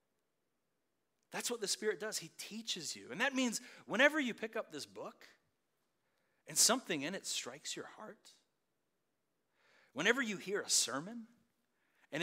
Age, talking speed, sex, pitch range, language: 40-59, 145 wpm, male, 170-225 Hz, English